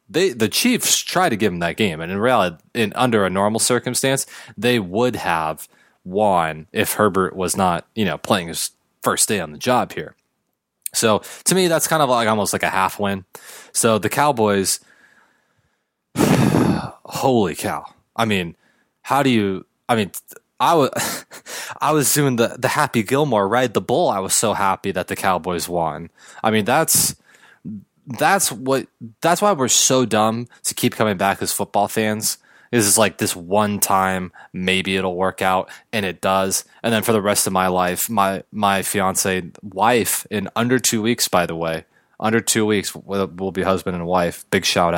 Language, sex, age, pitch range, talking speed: English, male, 20-39, 90-115 Hz, 185 wpm